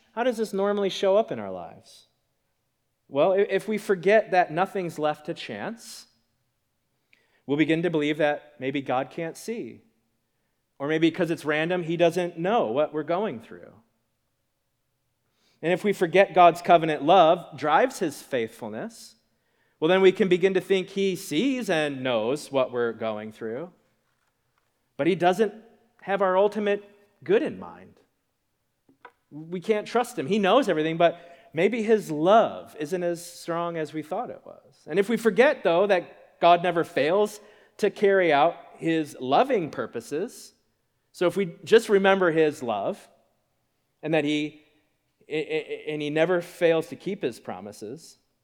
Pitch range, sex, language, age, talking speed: 145-200 Hz, male, English, 30-49, 155 wpm